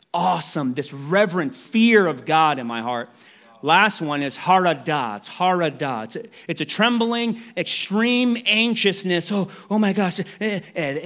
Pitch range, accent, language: 130-190 Hz, American, English